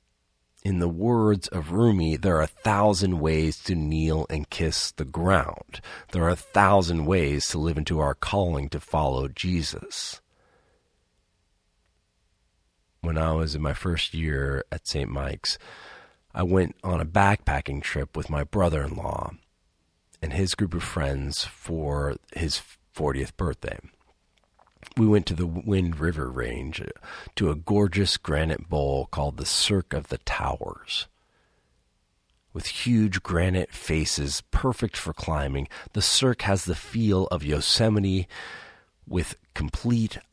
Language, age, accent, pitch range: English, 40-59, American, 70-95 Hz